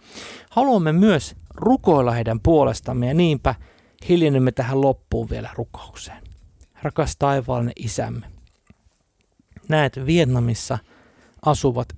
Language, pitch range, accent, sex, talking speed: Finnish, 110-135 Hz, native, male, 90 wpm